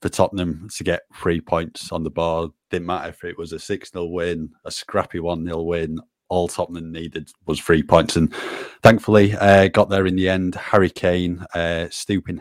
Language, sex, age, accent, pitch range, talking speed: English, male, 30-49, British, 85-95 Hz, 190 wpm